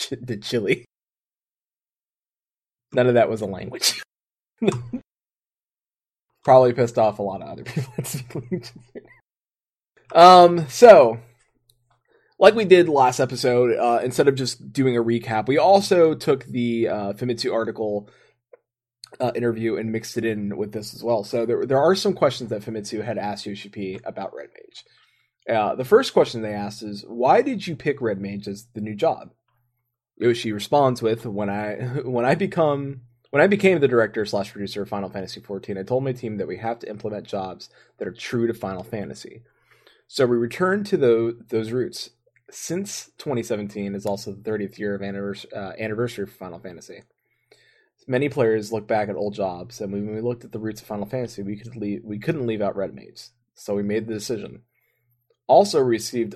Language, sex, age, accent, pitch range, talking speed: English, male, 20-39, American, 105-130 Hz, 175 wpm